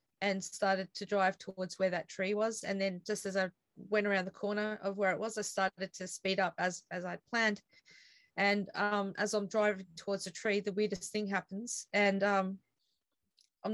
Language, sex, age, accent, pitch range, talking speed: English, female, 20-39, Australian, 190-215 Hz, 195 wpm